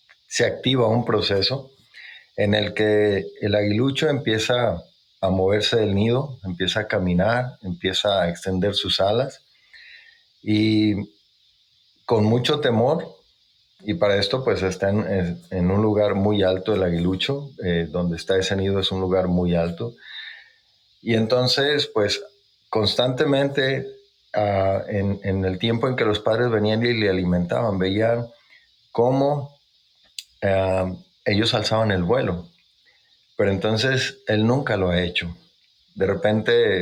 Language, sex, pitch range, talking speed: Spanish, male, 95-120 Hz, 135 wpm